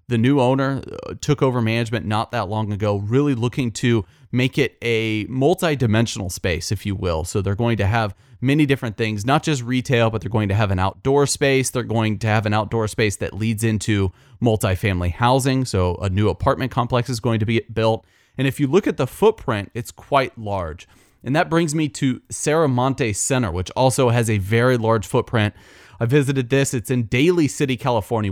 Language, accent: English, American